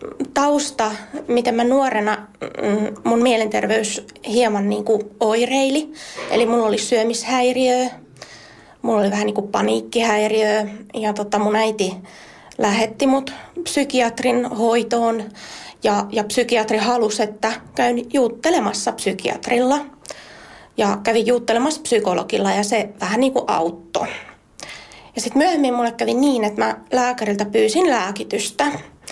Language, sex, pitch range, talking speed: Finnish, female, 215-270 Hz, 110 wpm